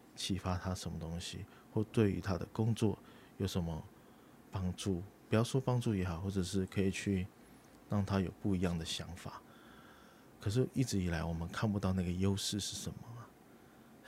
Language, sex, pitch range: Chinese, male, 90-105 Hz